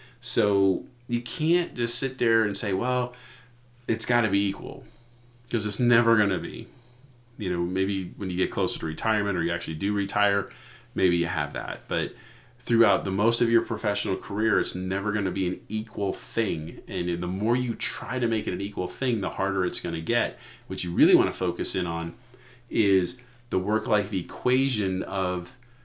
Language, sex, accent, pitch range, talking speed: English, male, American, 95-120 Hz, 195 wpm